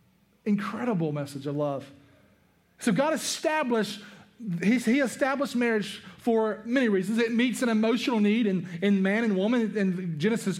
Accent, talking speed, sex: American, 140 wpm, male